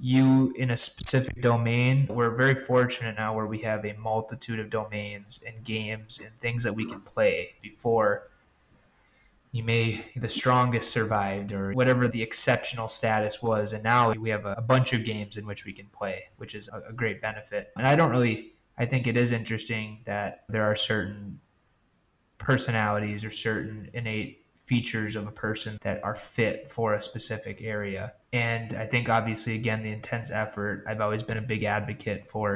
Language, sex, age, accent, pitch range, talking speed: English, male, 20-39, American, 105-120 Hz, 180 wpm